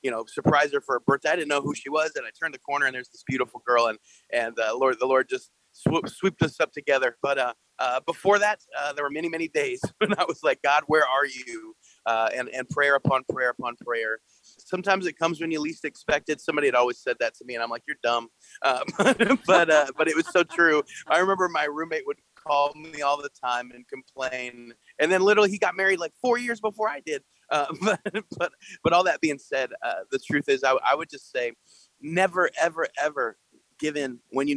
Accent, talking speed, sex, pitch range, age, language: American, 240 wpm, male, 135-185 Hz, 30-49, English